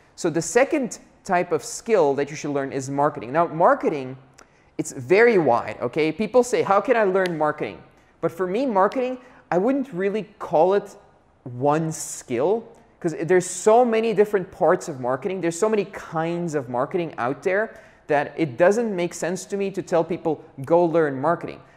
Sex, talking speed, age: male, 180 wpm, 20-39